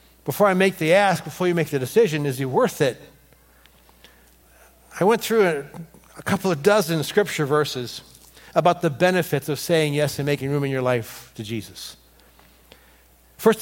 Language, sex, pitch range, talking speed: English, male, 120-175 Hz, 170 wpm